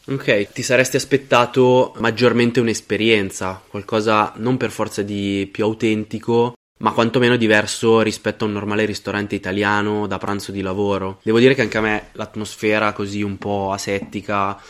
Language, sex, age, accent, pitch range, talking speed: Italian, male, 20-39, native, 100-115 Hz, 150 wpm